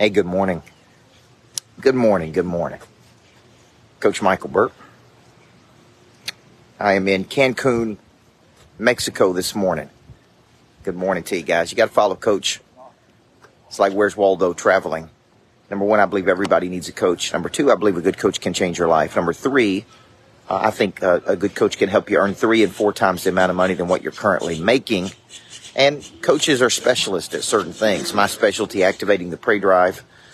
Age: 40-59